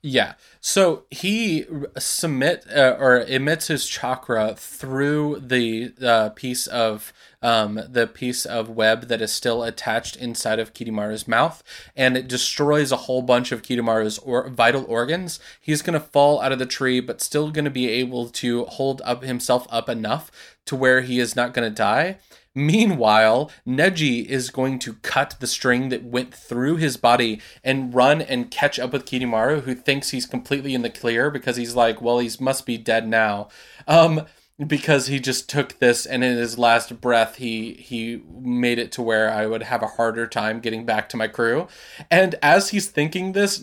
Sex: male